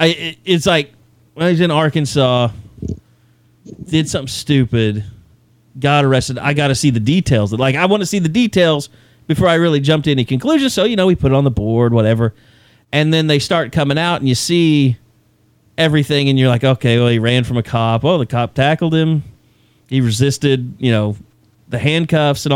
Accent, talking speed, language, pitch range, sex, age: American, 195 wpm, English, 125-170 Hz, male, 30-49